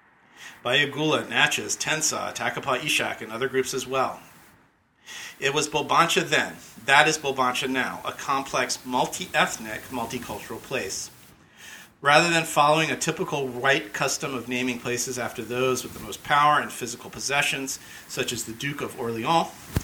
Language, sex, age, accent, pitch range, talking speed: English, male, 40-59, American, 120-140 Hz, 140 wpm